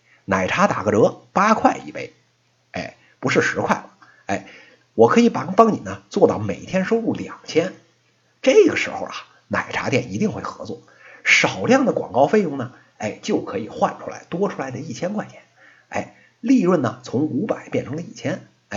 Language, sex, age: Chinese, male, 50-69